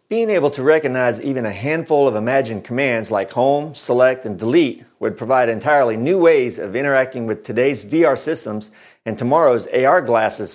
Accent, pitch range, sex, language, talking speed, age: American, 115-155 Hz, male, English, 170 wpm, 50-69